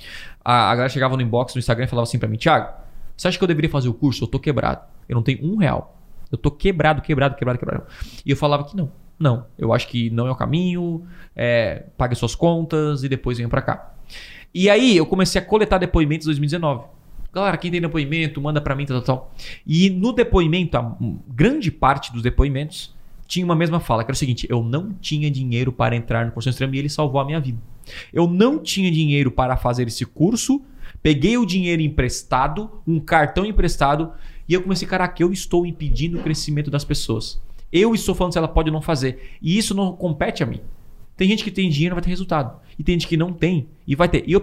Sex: male